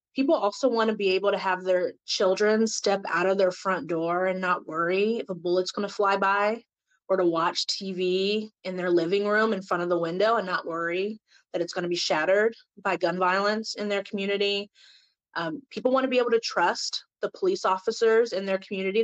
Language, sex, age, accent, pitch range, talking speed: English, female, 30-49, American, 180-215 Hz, 215 wpm